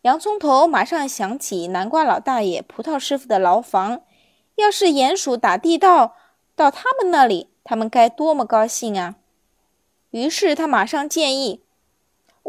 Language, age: Chinese, 20-39